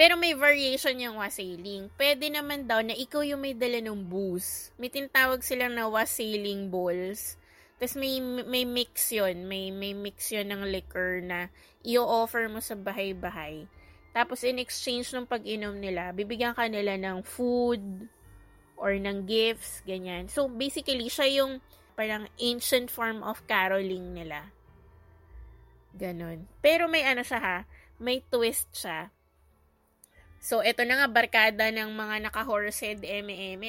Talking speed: 135 wpm